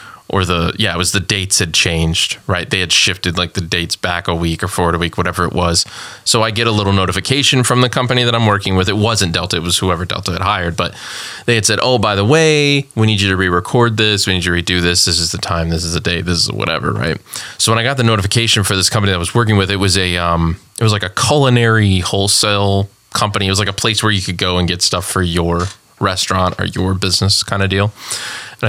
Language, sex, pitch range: English, male, 90-110 Hz